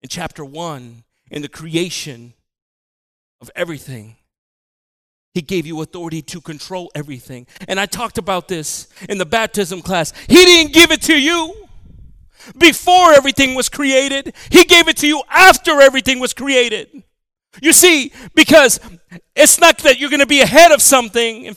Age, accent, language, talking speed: 40-59, American, English, 160 wpm